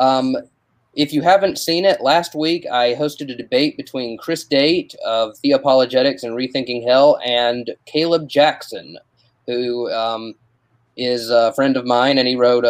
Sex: male